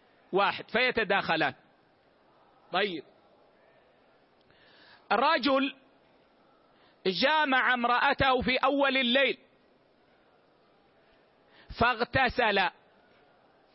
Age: 50-69